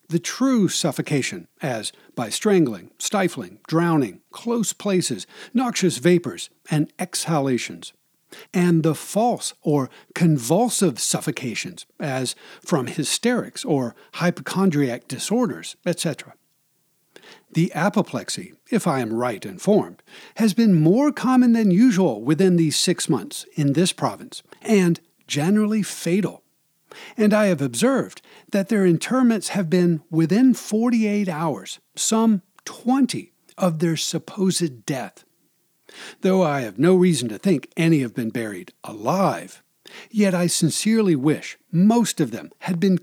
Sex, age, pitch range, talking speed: male, 60-79, 155-205 Hz, 125 wpm